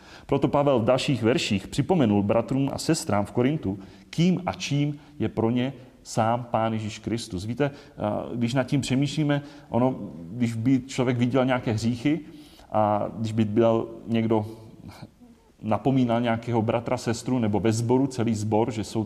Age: 30-49